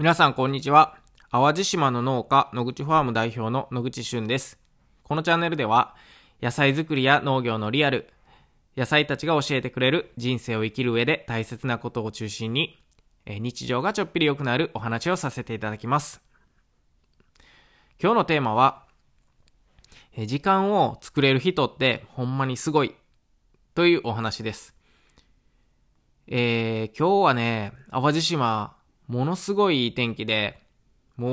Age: 20-39